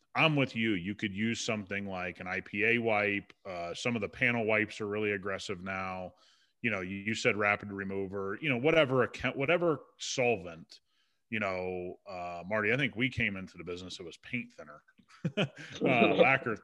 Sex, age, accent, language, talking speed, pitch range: male, 30-49, American, English, 180 wpm, 100-125 Hz